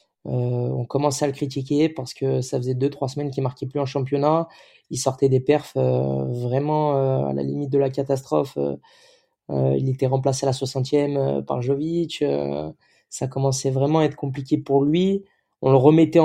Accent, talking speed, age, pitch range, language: French, 200 wpm, 20-39, 125-145 Hz, French